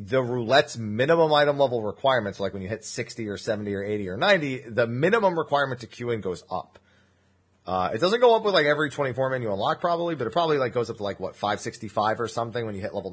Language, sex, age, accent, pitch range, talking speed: English, male, 30-49, American, 100-150 Hz, 240 wpm